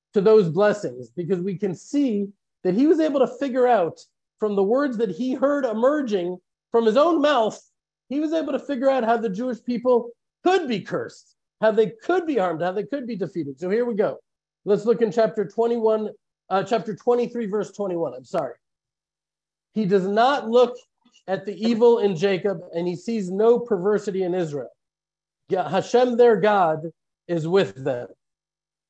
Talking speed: 180 wpm